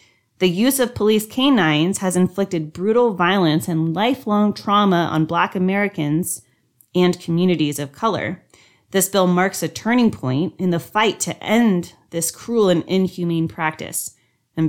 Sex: female